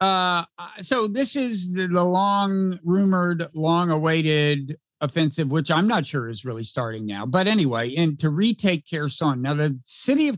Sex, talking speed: male, 170 wpm